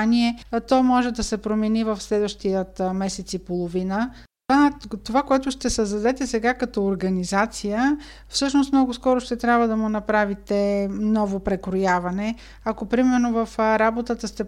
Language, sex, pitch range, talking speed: Bulgarian, female, 200-240 Hz, 135 wpm